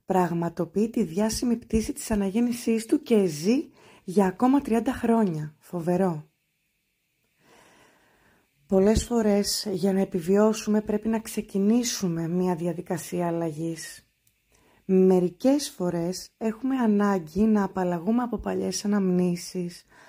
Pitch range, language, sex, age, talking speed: 185-225 Hz, Greek, female, 20-39, 100 wpm